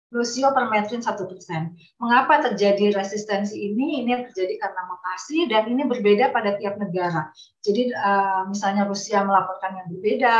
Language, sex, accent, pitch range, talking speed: Indonesian, female, native, 185-230 Hz, 140 wpm